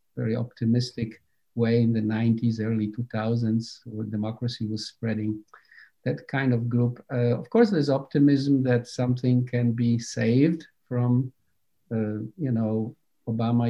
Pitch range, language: 110-130 Hz, English